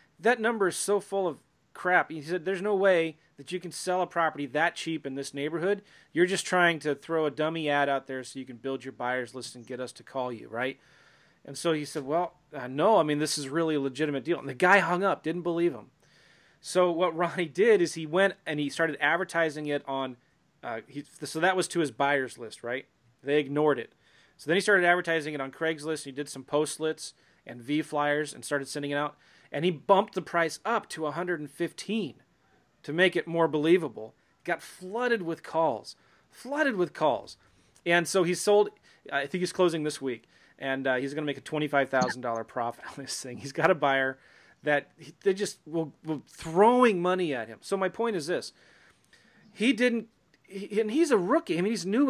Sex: male